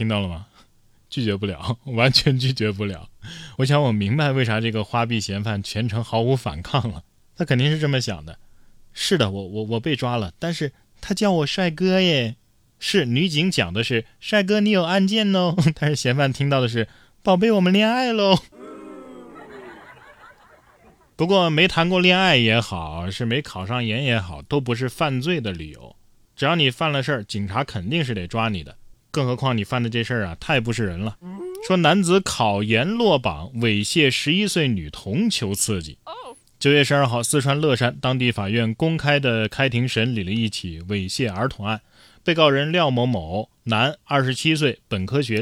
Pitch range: 110-150 Hz